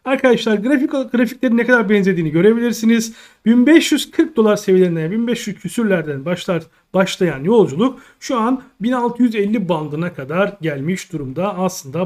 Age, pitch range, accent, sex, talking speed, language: 40-59, 165-230 Hz, native, male, 115 wpm, Turkish